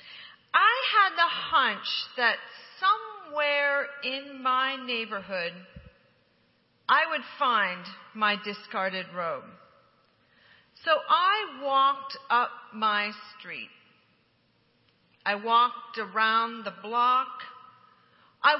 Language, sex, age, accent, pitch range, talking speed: English, female, 50-69, American, 210-310 Hz, 85 wpm